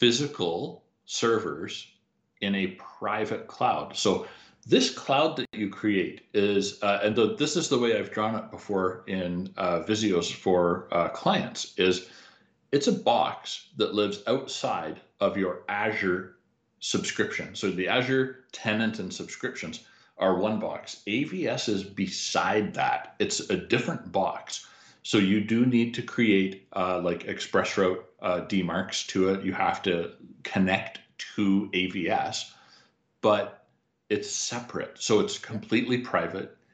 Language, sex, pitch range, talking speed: English, male, 95-110 Hz, 135 wpm